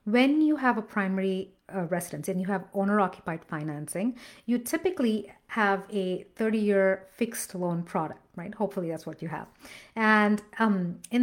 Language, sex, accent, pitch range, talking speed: English, female, Indian, 195-245 Hz, 155 wpm